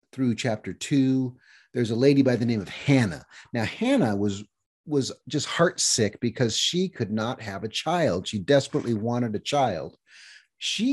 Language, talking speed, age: English, 165 wpm, 40-59